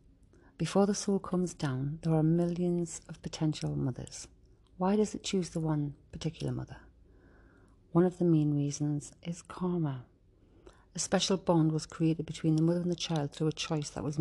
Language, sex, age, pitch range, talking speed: English, female, 40-59, 140-170 Hz, 175 wpm